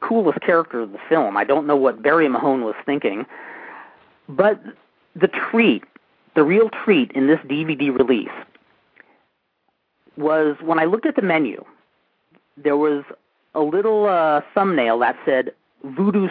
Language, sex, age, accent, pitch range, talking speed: English, male, 40-59, American, 145-220 Hz, 145 wpm